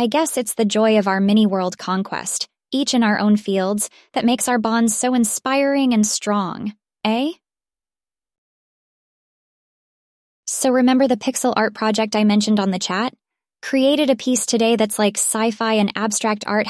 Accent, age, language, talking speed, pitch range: American, 20-39, English, 160 wpm, 195-240 Hz